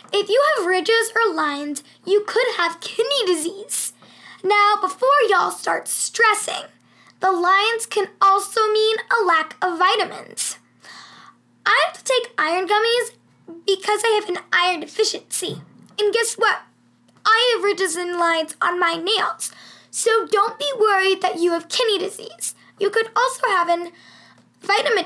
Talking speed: 150 wpm